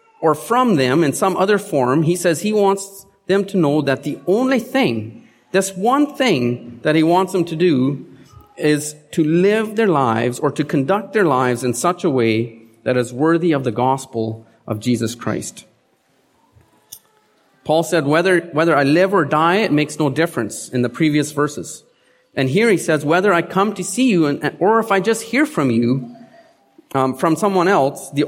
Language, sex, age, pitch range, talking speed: English, male, 40-59, 135-195 Hz, 190 wpm